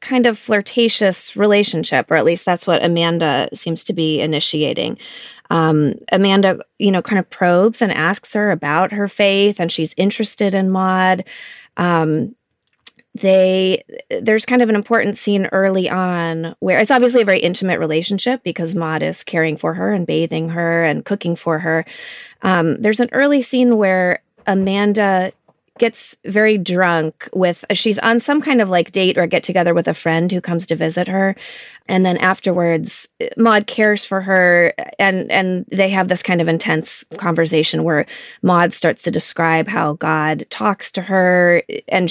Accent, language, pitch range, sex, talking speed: American, English, 165-205 Hz, female, 165 wpm